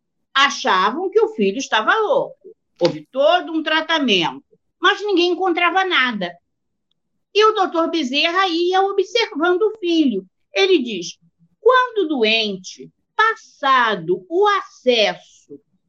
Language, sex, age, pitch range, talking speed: Portuguese, female, 50-69, 245-370 Hz, 110 wpm